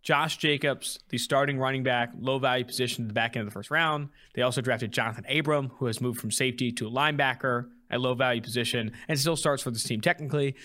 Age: 20-39